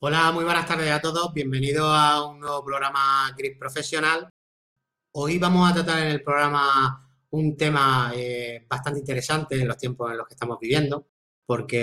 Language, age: Spanish, 30-49